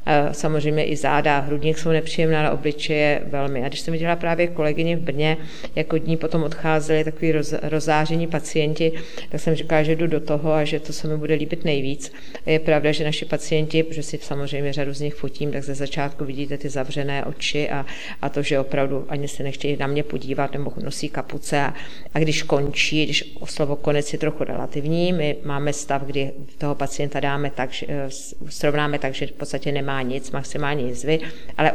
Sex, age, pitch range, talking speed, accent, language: female, 40-59, 145-155 Hz, 195 wpm, native, Czech